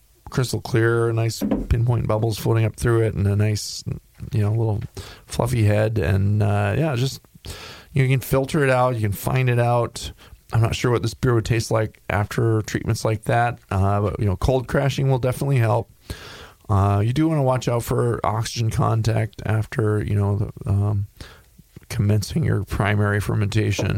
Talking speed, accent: 180 wpm, American